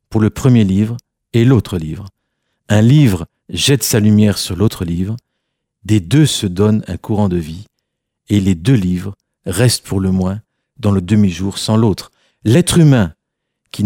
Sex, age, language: male, 50-69, French